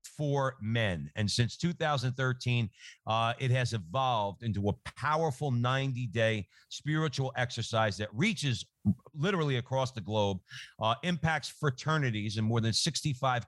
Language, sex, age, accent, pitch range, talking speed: English, male, 50-69, American, 115-145 Hz, 125 wpm